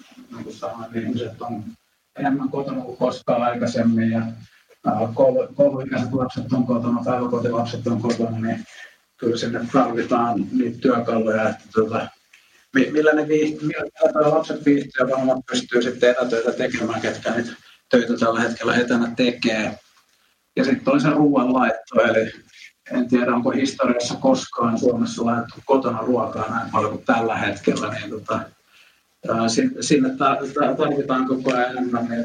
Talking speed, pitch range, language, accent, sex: 135 wpm, 120-140 Hz, Finnish, native, male